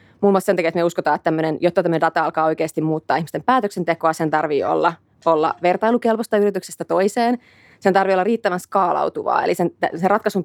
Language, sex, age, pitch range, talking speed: Finnish, female, 30-49, 160-185 Hz, 190 wpm